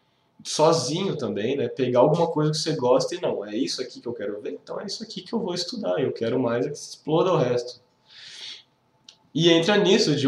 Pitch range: 120-150 Hz